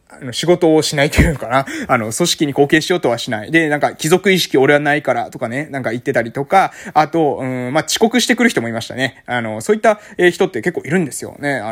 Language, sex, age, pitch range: Japanese, male, 20-39, 130-200 Hz